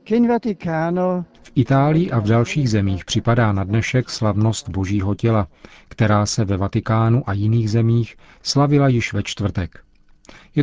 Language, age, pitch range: Czech, 40-59, 100-120 Hz